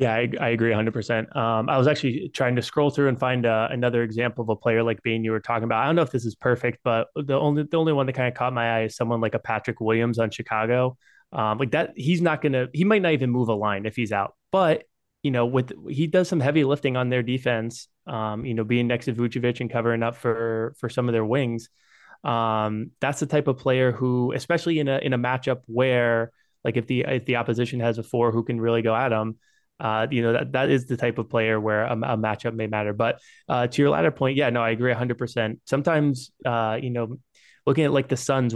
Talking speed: 255 wpm